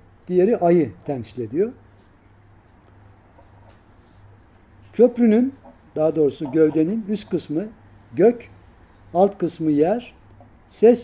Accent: native